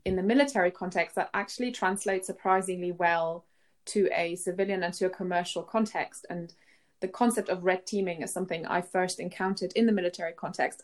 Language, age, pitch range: English, 20-39, 180-215 Hz